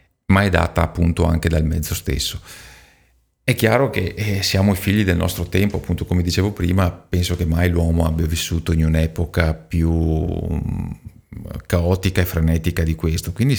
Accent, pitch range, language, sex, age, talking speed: native, 80-100 Hz, Italian, male, 40-59, 160 wpm